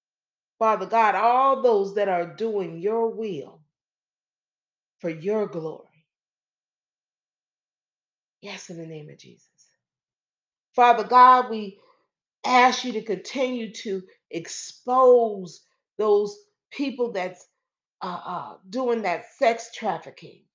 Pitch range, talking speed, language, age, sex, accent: 200-255 Hz, 100 wpm, English, 40-59, female, American